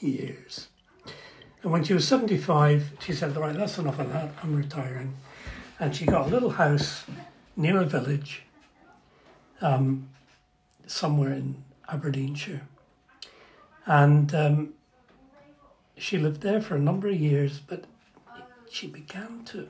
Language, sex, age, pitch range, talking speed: English, male, 60-79, 140-185 Hz, 130 wpm